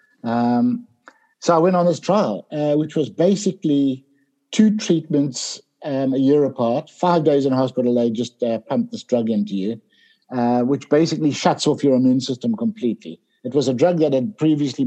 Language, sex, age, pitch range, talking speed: English, male, 60-79, 120-150 Hz, 180 wpm